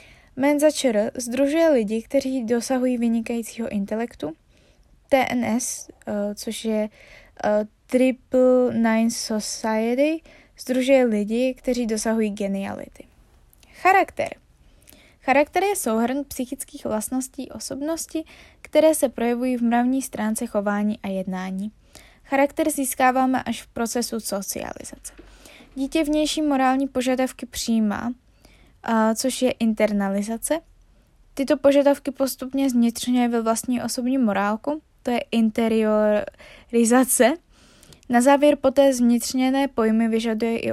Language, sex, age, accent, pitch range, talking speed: Czech, female, 20-39, native, 220-270 Hz, 100 wpm